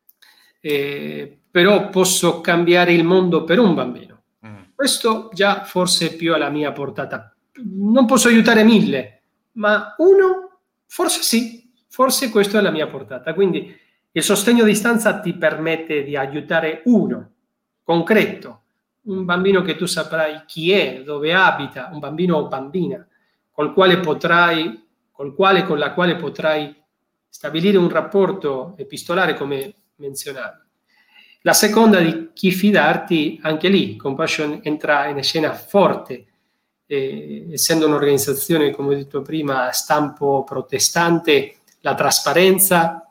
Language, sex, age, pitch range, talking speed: Italian, male, 40-59, 145-200 Hz, 130 wpm